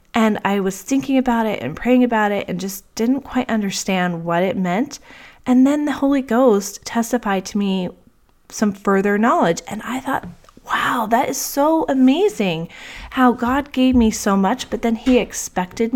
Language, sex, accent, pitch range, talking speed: English, female, American, 185-250 Hz, 175 wpm